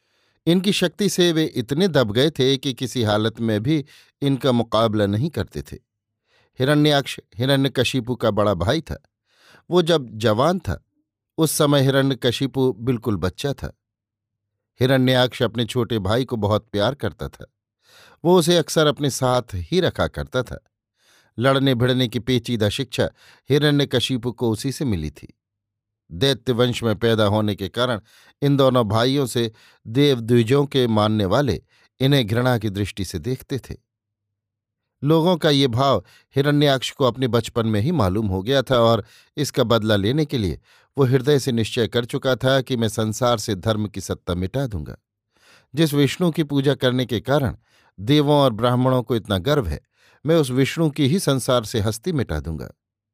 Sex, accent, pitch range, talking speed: male, native, 110-140 Hz, 165 wpm